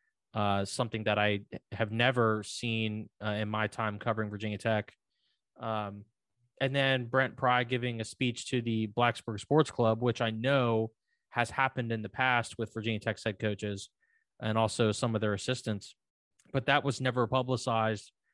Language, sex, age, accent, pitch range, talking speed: English, male, 20-39, American, 110-130 Hz, 165 wpm